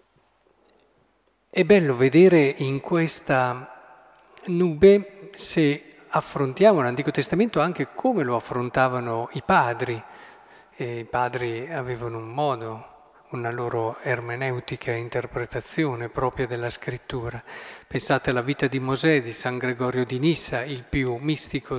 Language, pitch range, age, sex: Italian, 130-175 Hz, 40-59, male